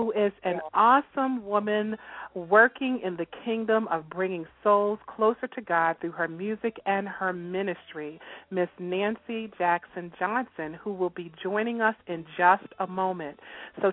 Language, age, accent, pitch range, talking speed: English, 40-59, American, 175-220 Hz, 150 wpm